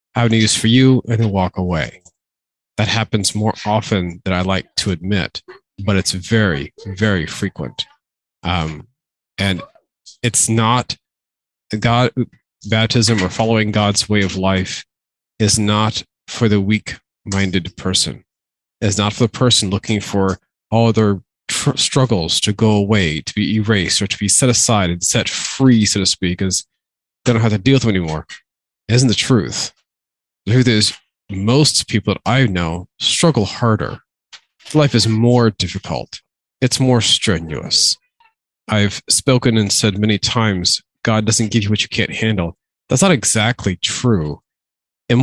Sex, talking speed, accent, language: male, 155 wpm, American, English